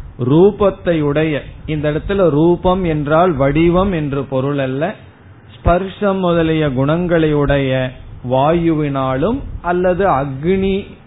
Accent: native